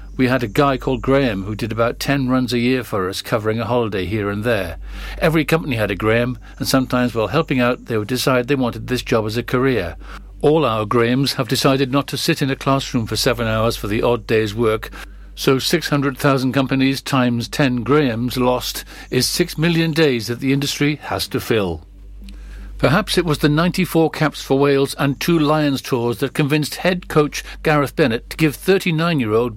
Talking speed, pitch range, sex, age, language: 200 wpm, 125-155 Hz, male, 60-79, English